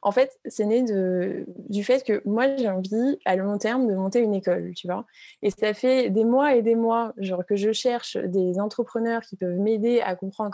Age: 20-39